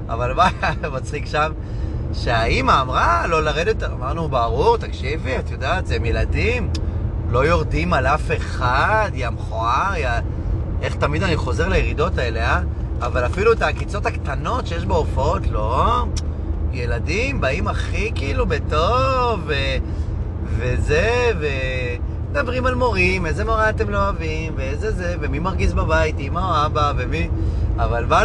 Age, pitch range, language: 30-49, 85-100 Hz, Hebrew